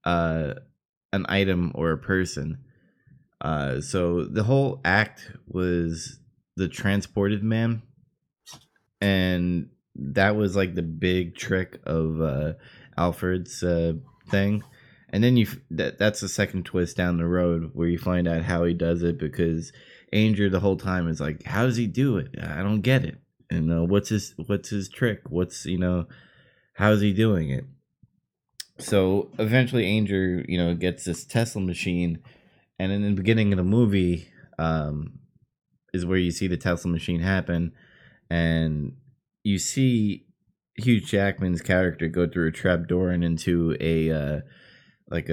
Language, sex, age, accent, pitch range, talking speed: English, male, 20-39, American, 85-100 Hz, 150 wpm